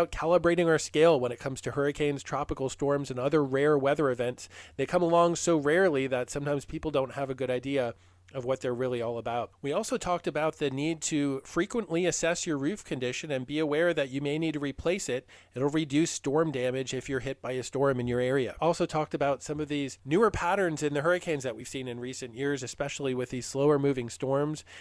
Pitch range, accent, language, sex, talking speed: 130-170 Hz, American, English, male, 225 wpm